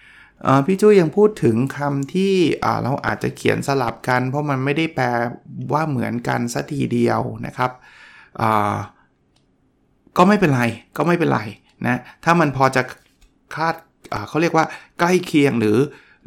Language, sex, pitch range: Thai, male, 120-160 Hz